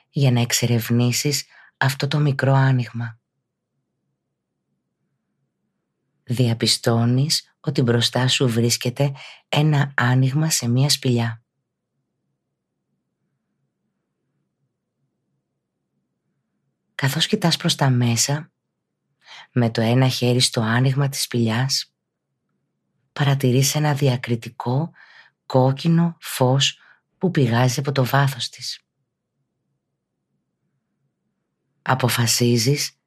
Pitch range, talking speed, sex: 120-140 Hz, 75 wpm, female